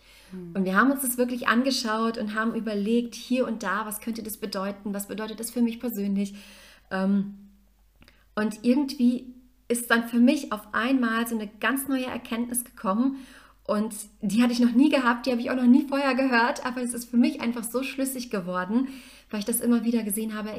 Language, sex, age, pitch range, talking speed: German, female, 30-49, 200-240 Hz, 200 wpm